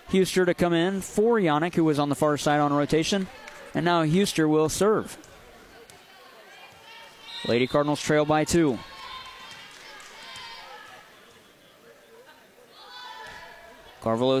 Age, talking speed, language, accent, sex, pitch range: 30-49, 105 wpm, English, American, male, 150-210 Hz